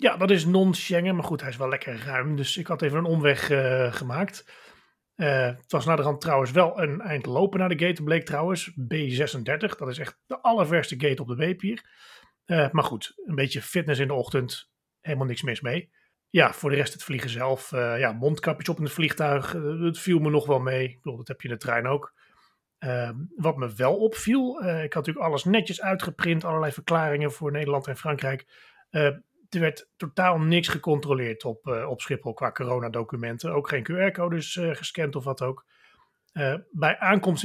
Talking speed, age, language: 210 wpm, 40-59, Dutch